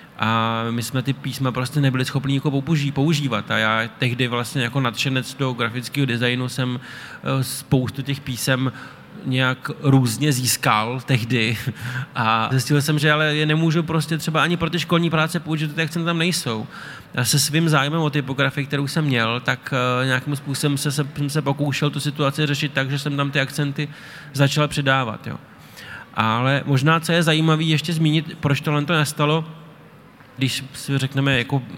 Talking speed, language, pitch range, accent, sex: 170 wpm, Czech, 125-150 Hz, native, male